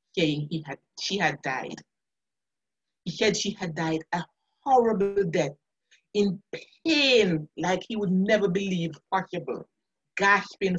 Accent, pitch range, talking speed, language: Nigerian, 160-230 Hz, 120 wpm, English